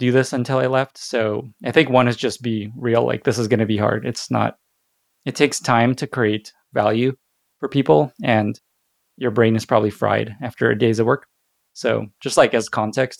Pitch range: 115-130 Hz